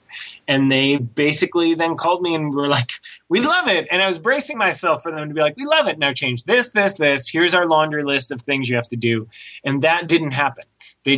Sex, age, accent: male, 20-39, American